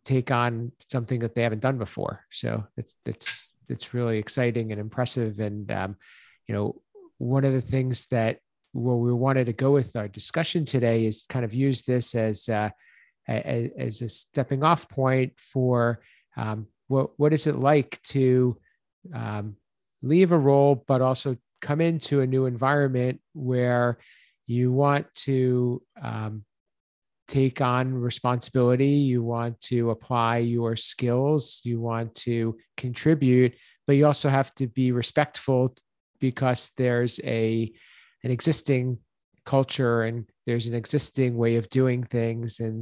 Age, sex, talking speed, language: 50-69, male, 150 wpm, English